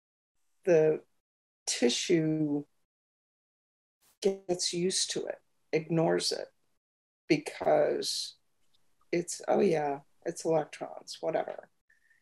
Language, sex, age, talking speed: English, female, 50-69, 75 wpm